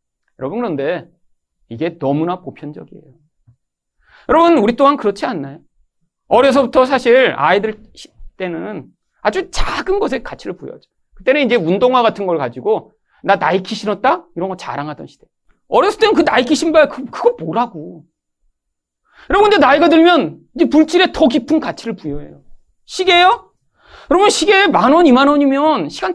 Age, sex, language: 40-59, male, Korean